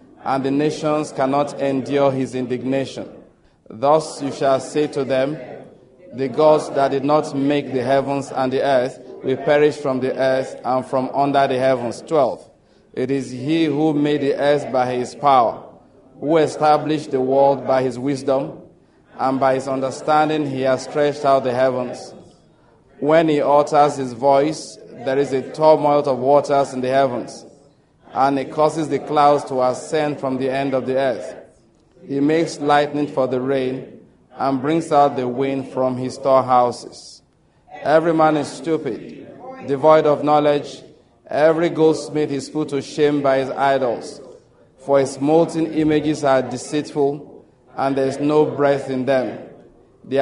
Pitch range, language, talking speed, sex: 130-150 Hz, English, 160 wpm, male